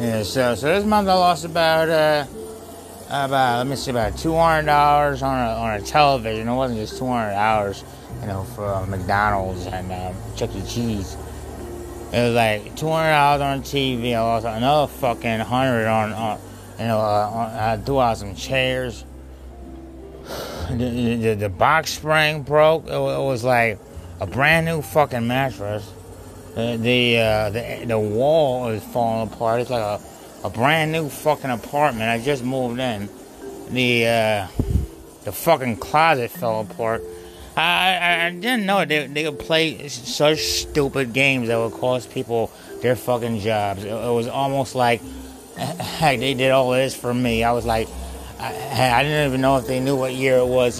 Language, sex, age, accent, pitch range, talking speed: English, male, 30-49, American, 110-130 Hz, 170 wpm